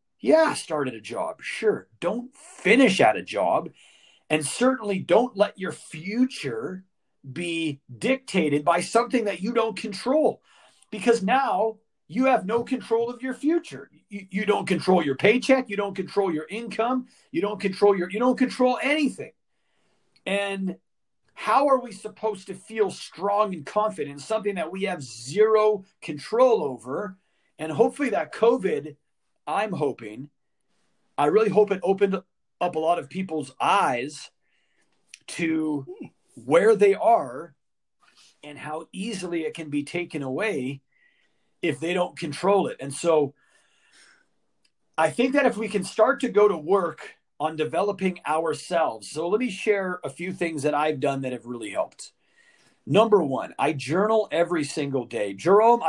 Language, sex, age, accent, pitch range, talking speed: English, male, 40-59, American, 160-225 Hz, 150 wpm